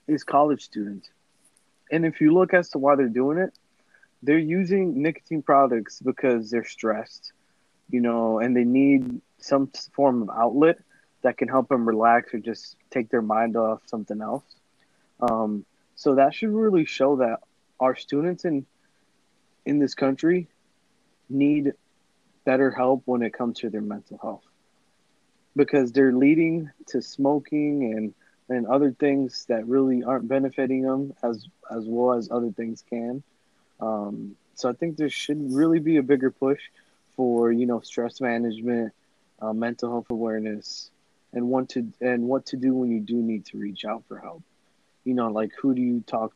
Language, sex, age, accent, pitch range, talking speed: English, male, 20-39, American, 115-140 Hz, 165 wpm